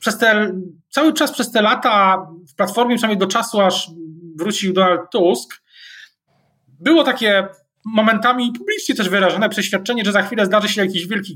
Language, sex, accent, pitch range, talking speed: Polish, male, native, 155-200 Hz, 160 wpm